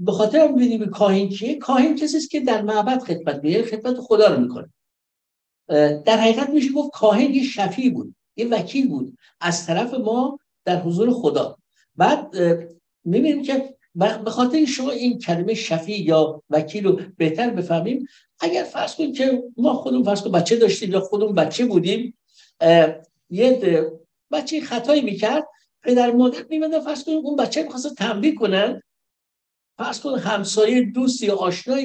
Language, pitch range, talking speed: Persian, 175-260 Hz, 140 wpm